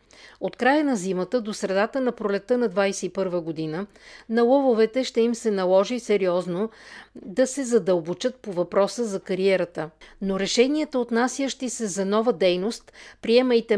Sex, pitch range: female, 190-240 Hz